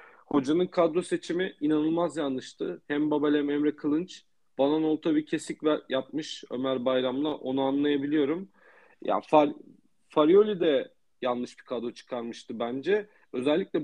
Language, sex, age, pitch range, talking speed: Turkish, male, 40-59, 130-170 Hz, 125 wpm